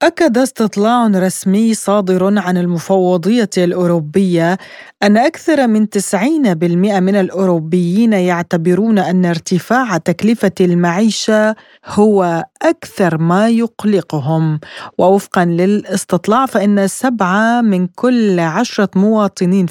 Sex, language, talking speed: female, Arabic, 90 wpm